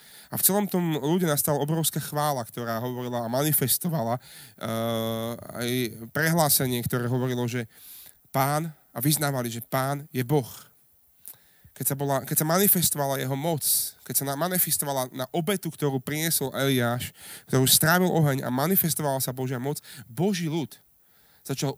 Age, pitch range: 30-49, 130-165 Hz